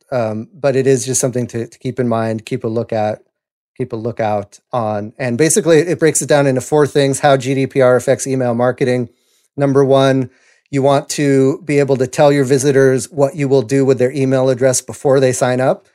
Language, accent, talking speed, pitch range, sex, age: English, American, 210 wpm, 125-140 Hz, male, 30-49